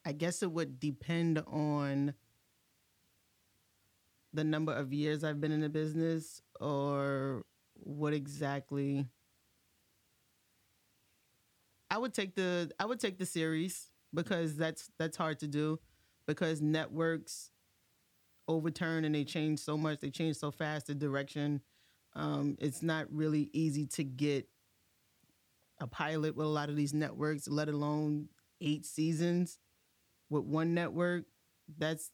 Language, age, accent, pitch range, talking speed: English, 20-39, American, 140-160 Hz, 130 wpm